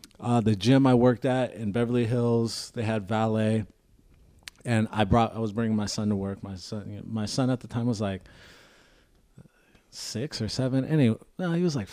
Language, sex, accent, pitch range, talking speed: English, male, American, 105-130 Hz, 185 wpm